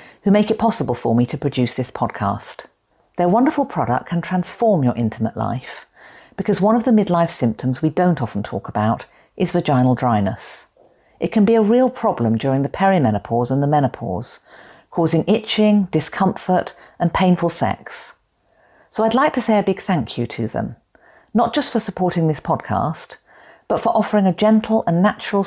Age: 50-69